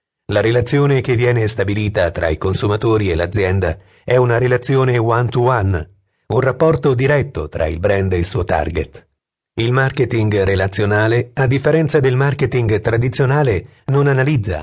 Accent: native